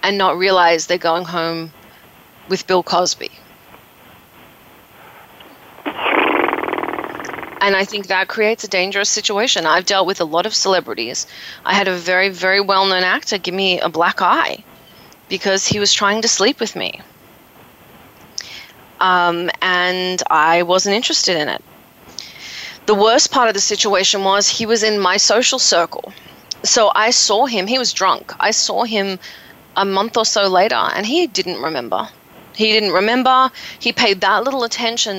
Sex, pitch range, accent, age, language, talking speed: female, 185-225 Hz, Australian, 30-49, English, 155 wpm